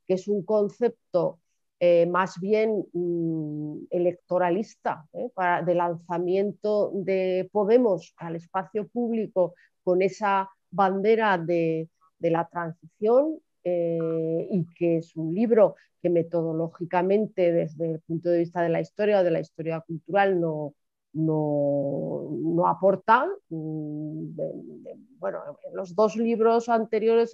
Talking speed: 125 wpm